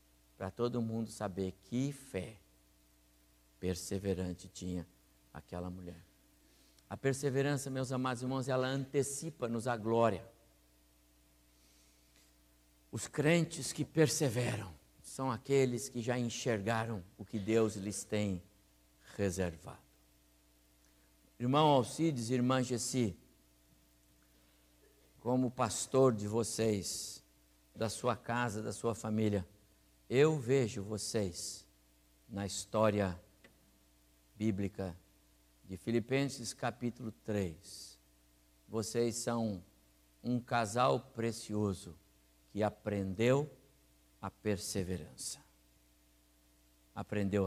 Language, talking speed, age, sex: Portuguese, 85 wpm, 60-79, male